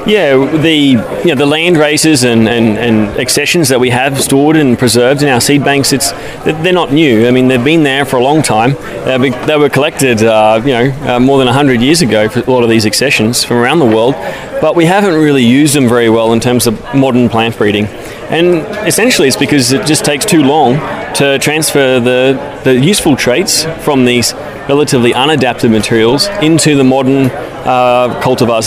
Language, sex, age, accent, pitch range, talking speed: English, male, 20-39, Australian, 120-145 Hz, 200 wpm